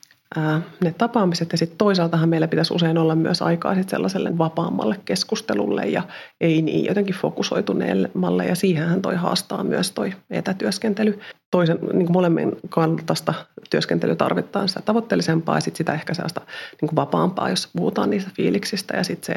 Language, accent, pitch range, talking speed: Finnish, native, 160-200 Hz, 150 wpm